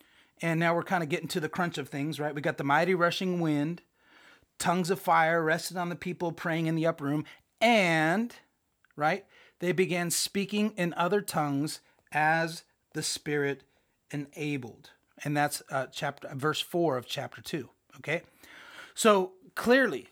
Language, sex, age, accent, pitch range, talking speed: English, male, 30-49, American, 140-185 Hz, 160 wpm